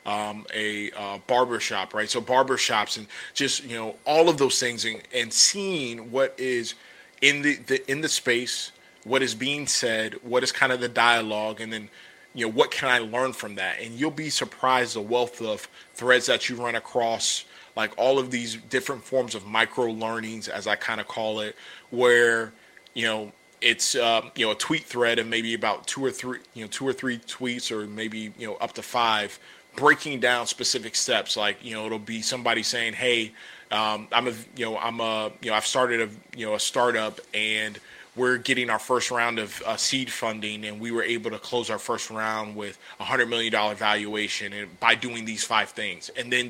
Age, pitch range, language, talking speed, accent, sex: 20-39, 110-125 Hz, English, 210 wpm, American, male